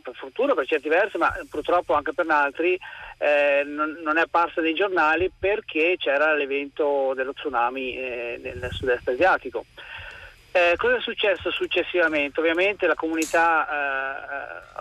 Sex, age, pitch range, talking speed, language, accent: male, 40-59, 145-175 Hz, 140 wpm, Italian, native